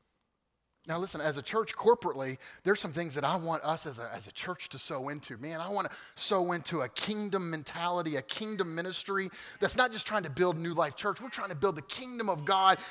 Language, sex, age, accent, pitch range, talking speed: English, male, 30-49, American, 205-275 Hz, 230 wpm